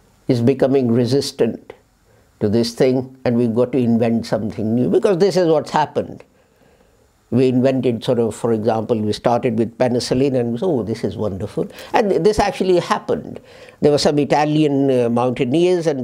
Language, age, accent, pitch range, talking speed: English, 60-79, Indian, 110-140 Hz, 170 wpm